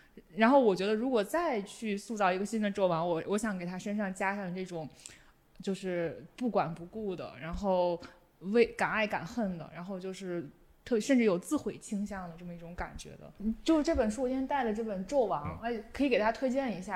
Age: 20-39